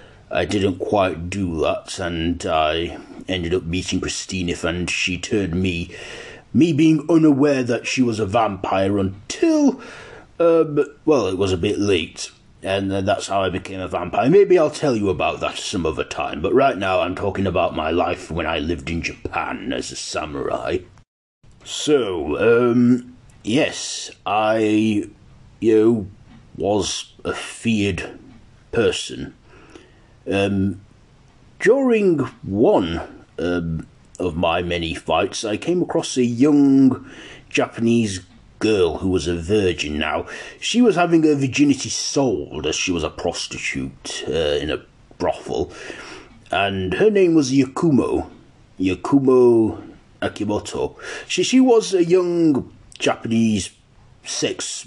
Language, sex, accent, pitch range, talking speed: English, male, British, 95-145 Hz, 135 wpm